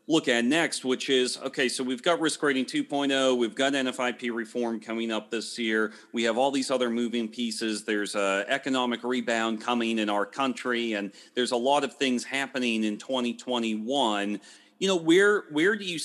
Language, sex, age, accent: English, male, 40-59, American